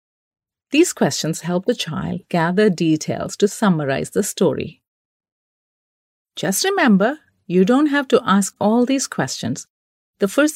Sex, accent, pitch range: female, Indian, 155-215 Hz